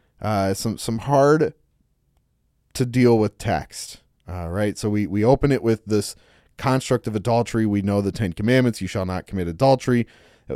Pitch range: 95-125 Hz